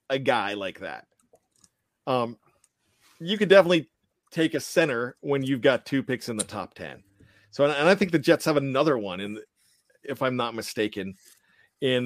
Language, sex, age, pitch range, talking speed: English, male, 40-59, 115-145 Hz, 175 wpm